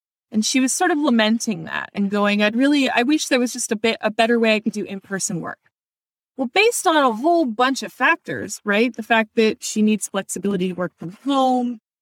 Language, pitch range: English, 195-255 Hz